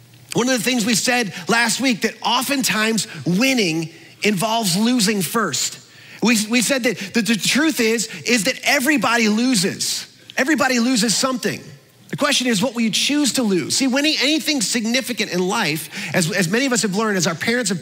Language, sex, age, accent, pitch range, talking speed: English, male, 30-49, American, 195-245 Hz, 185 wpm